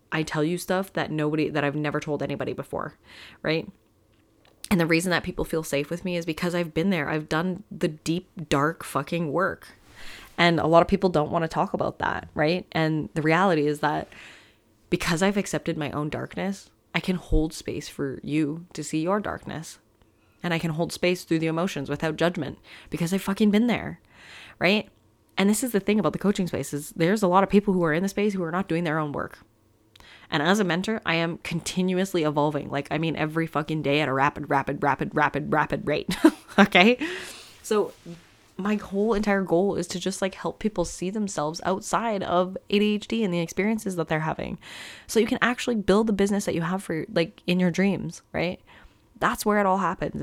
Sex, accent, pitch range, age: female, American, 155-190 Hz, 20-39